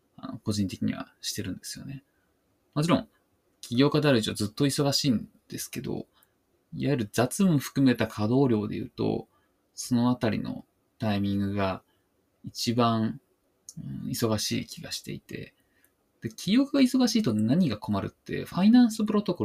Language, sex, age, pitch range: Japanese, male, 20-39, 110-150 Hz